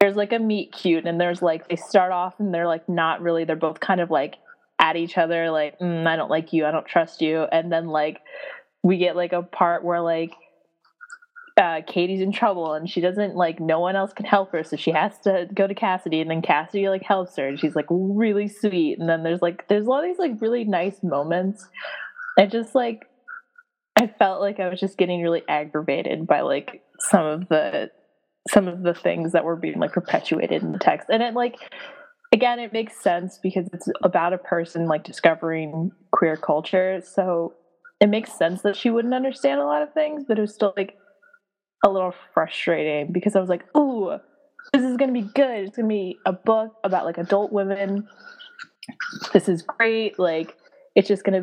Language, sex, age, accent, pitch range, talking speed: English, female, 20-39, American, 170-215 Hz, 210 wpm